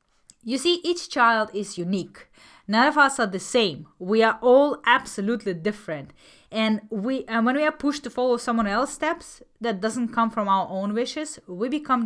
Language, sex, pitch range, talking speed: English, female, 185-230 Hz, 190 wpm